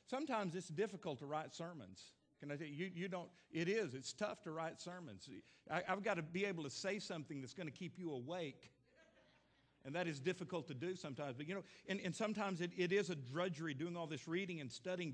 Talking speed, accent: 230 wpm, American